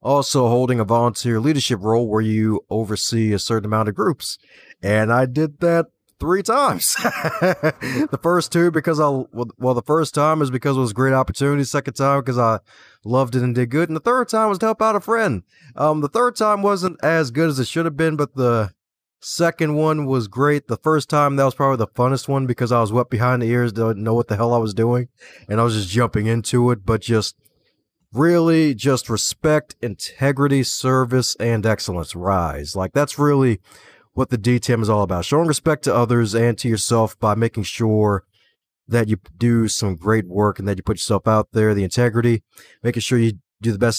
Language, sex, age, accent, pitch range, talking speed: English, male, 30-49, American, 110-145 Hz, 210 wpm